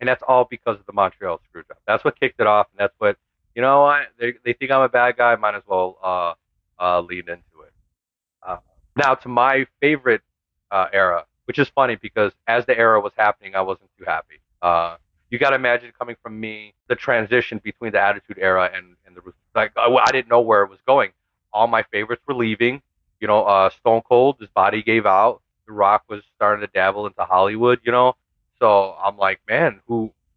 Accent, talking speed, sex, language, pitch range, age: American, 215 wpm, male, English, 90-120 Hz, 30-49